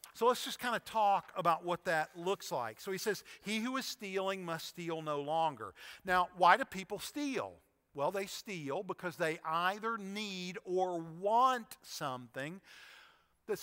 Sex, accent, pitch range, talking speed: male, American, 160-210 Hz, 165 wpm